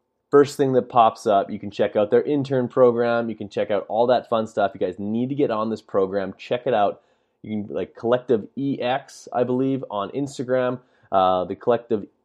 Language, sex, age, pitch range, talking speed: English, male, 20-39, 100-130 Hz, 210 wpm